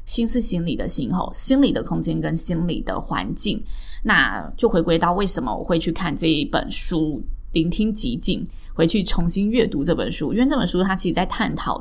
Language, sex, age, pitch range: Chinese, female, 20-39, 165-220 Hz